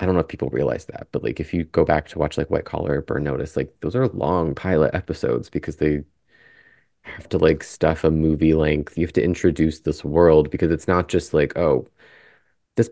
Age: 30-49